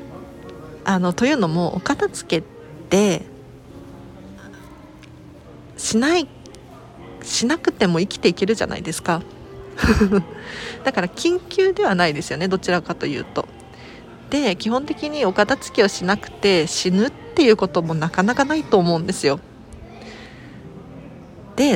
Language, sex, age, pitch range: Japanese, female, 40-59, 175-245 Hz